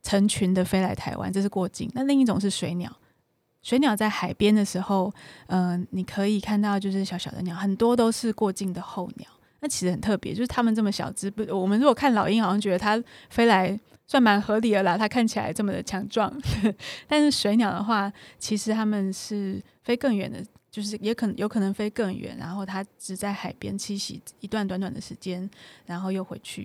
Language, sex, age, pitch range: Chinese, female, 20-39, 190-220 Hz